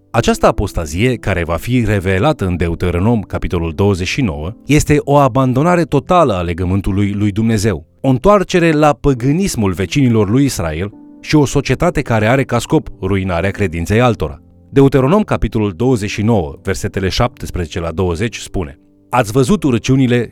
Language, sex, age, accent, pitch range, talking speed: Romanian, male, 30-49, native, 100-140 Hz, 135 wpm